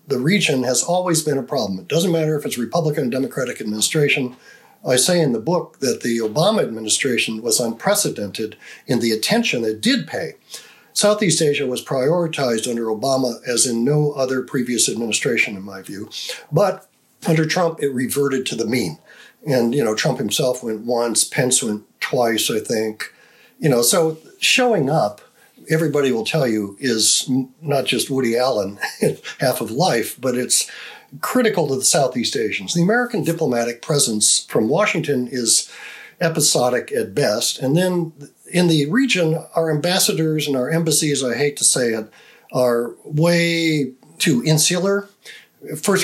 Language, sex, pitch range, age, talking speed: English, male, 125-170 Hz, 50-69, 160 wpm